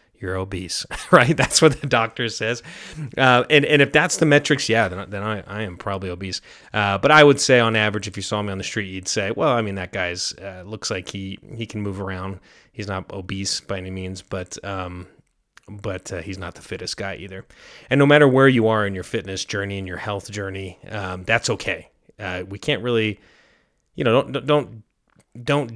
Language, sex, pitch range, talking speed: English, male, 95-115 Hz, 220 wpm